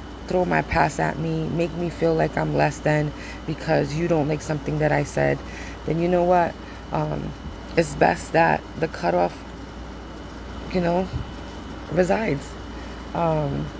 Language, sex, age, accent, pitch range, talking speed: English, female, 20-39, American, 105-165 Hz, 150 wpm